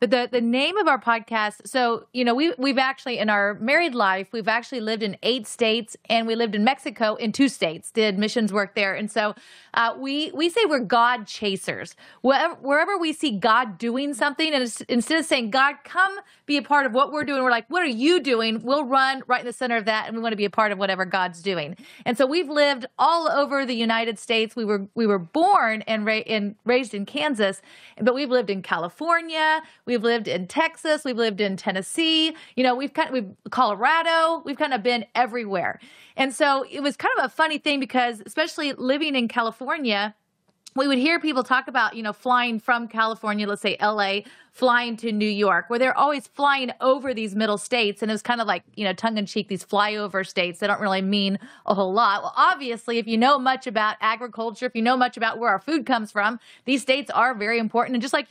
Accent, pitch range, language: American, 215-275 Hz, English